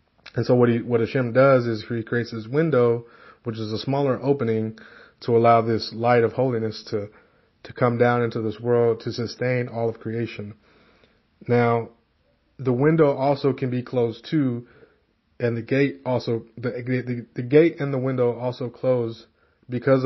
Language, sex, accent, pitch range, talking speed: English, male, American, 115-125 Hz, 170 wpm